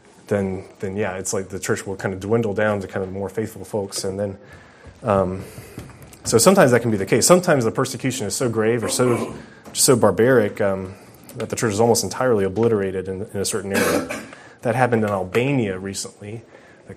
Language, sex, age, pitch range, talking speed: English, male, 30-49, 95-110 Hz, 205 wpm